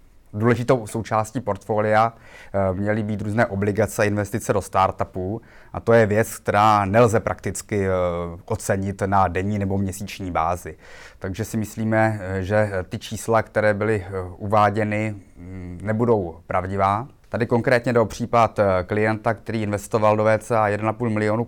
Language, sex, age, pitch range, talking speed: Czech, male, 20-39, 100-115 Hz, 130 wpm